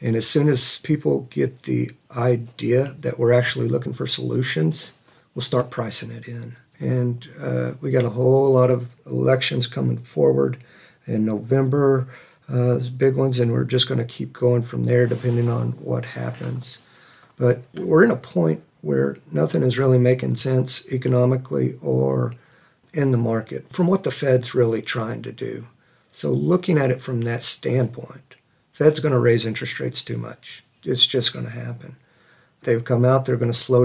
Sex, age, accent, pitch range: male, 50-69, American, 115-130 Hz